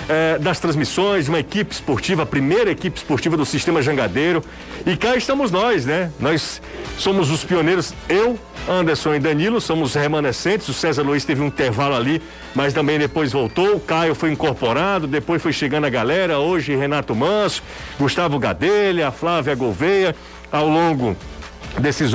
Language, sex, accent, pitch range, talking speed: Portuguese, male, Brazilian, 135-170 Hz, 155 wpm